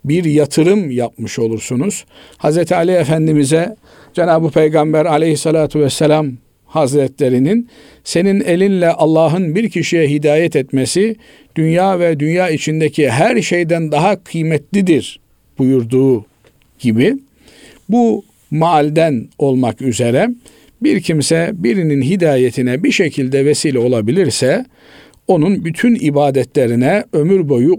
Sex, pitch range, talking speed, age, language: male, 145-190 Hz, 100 wpm, 50-69, Turkish